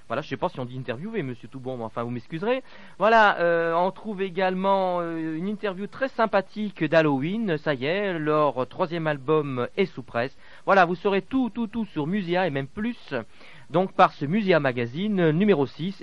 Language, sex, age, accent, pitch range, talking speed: French, male, 40-59, French, 130-195 Hz, 190 wpm